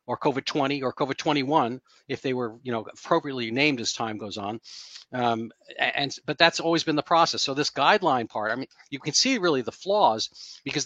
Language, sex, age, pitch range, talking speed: English, male, 50-69, 120-145 Hz, 215 wpm